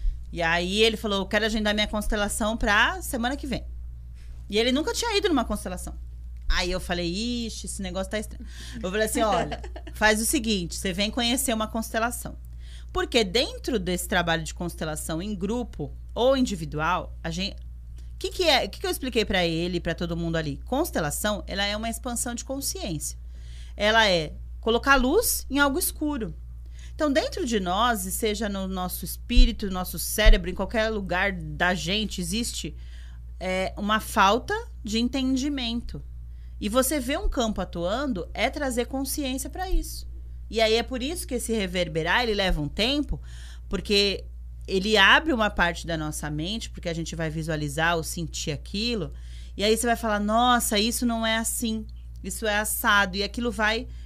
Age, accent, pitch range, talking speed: 30-49, Brazilian, 165-240 Hz, 175 wpm